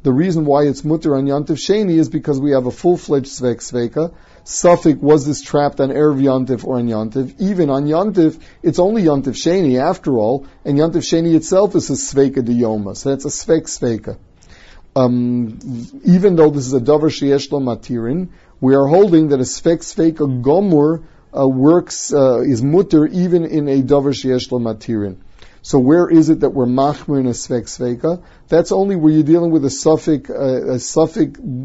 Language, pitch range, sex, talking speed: English, 125-160 Hz, male, 185 wpm